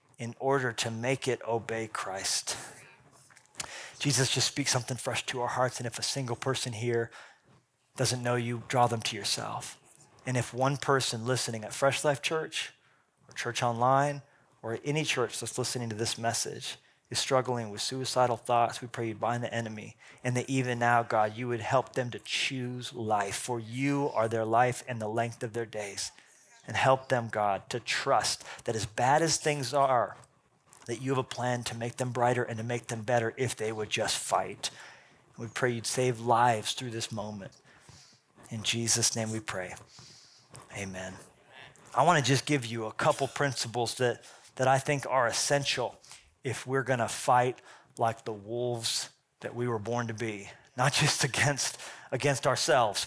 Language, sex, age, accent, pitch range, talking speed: English, male, 30-49, American, 115-130 Hz, 180 wpm